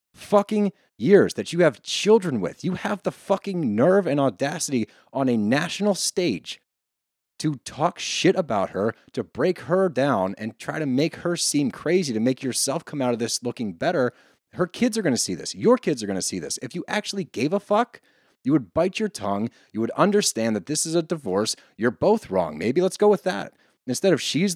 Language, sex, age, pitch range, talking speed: English, male, 30-49, 120-185 Hz, 215 wpm